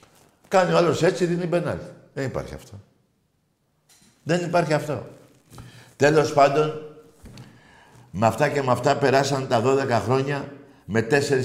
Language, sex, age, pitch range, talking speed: Greek, male, 60-79, 130-165 Hz, 125 wpm